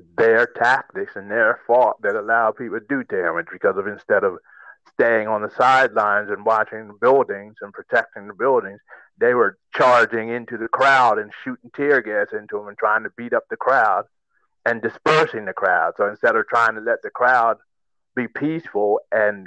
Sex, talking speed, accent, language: male, 190 wpm, American, English